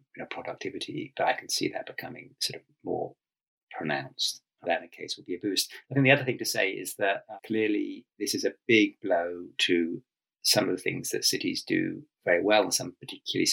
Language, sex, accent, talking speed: English, male, British, 215 wpm